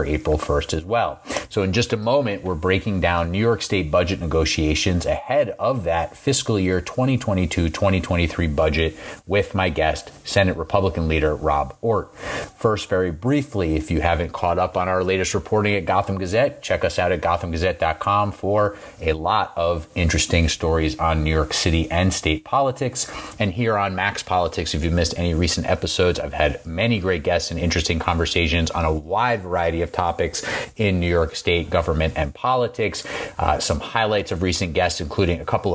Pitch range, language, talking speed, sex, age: 80-95 Hz, English, 180 wpm, male, 30-49